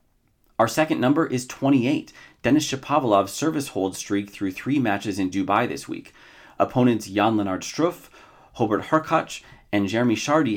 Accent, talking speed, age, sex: American, 150 wpm, 30-49, male